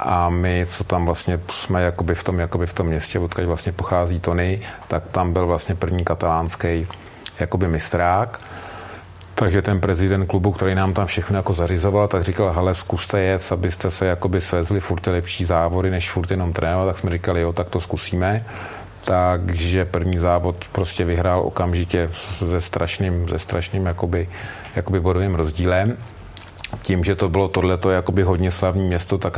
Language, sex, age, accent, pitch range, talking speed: Czech, male, 40-59, native, 85-95 Hz, 155 wpm